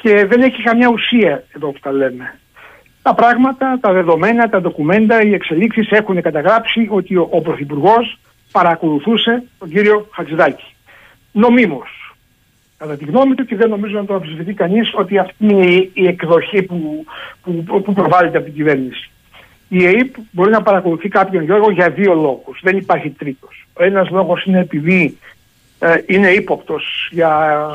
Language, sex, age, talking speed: Greek, male, 60-79, 155 wpm